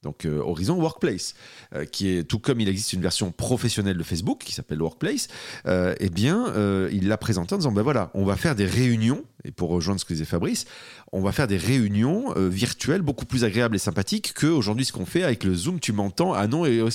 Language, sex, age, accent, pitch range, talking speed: French, male, 40-59, French, 95-125 Hz, 235 wpm